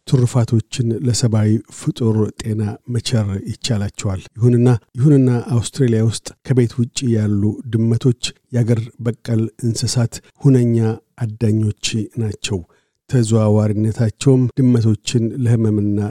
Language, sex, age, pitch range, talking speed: Amharic, male, 50-69, 110-125 Hz, 90 wpm